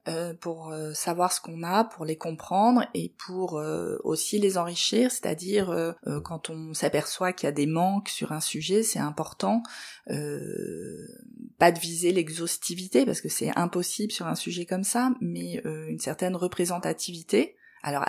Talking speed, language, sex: 165 wpm, French, female